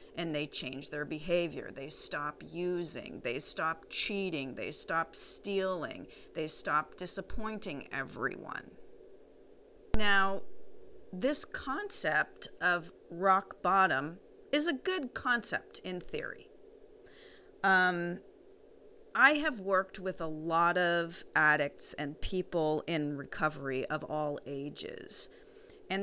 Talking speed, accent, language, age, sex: 110 wpm, American, English, 40-59, female